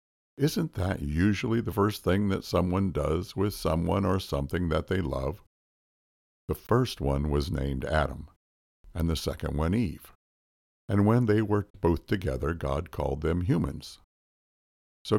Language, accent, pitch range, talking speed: English, American, 70-95 Hz, 150 wpm